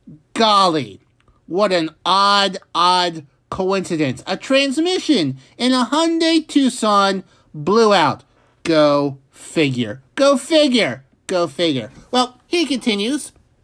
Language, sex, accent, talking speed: English, male, American, 100 wpm